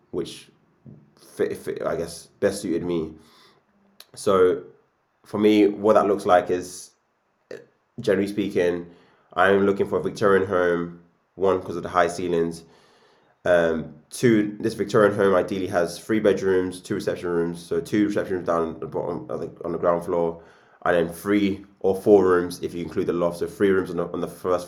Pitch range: 85-100 Hz